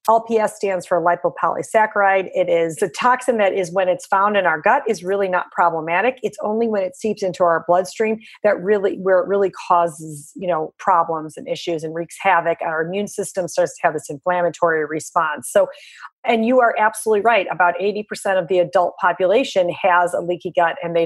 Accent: American